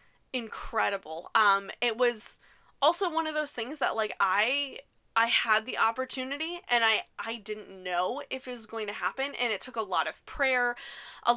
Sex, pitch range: female, 210-255 Hz